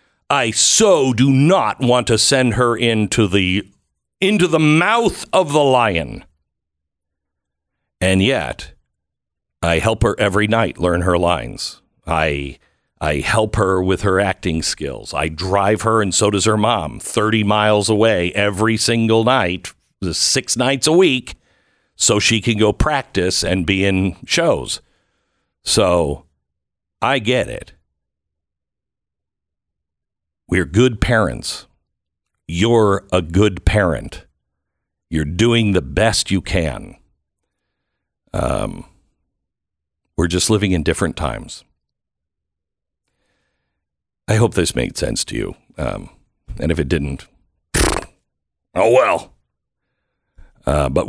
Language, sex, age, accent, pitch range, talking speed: English, male, 60-79, American, 75-110 Hz, 120 wpm